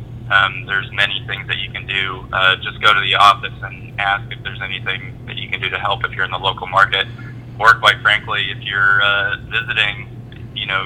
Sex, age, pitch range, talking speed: male, 20-39, 105-120 Hz, 220 wpm